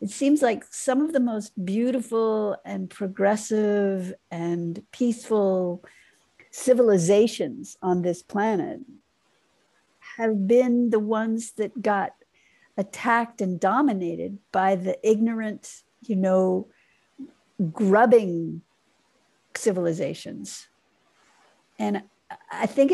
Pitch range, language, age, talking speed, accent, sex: 180-230 Hz, English, 60-79, 90 wpm, American, female